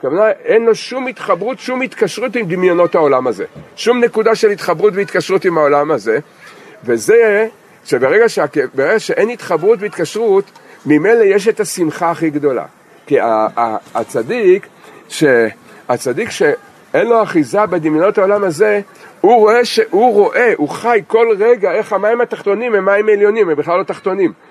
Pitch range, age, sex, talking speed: 190-265 Hz, 50-69, male, 140 wpm